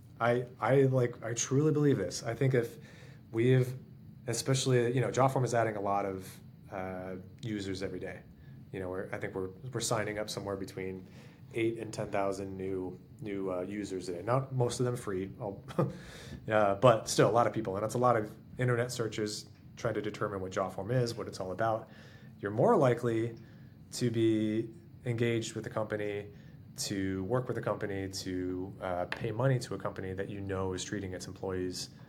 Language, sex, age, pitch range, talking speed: English, male, 30-49, 100-125 Hz, 195 wpm